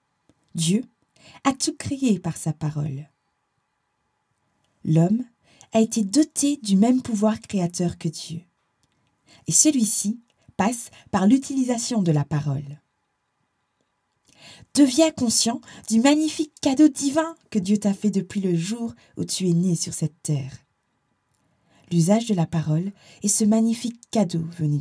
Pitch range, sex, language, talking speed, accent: 160-235 Hz, female, French, 130 wpm, French